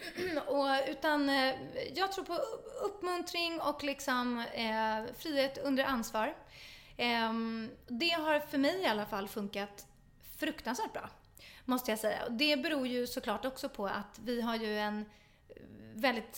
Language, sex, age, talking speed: English, female, 30-49, 145 wpm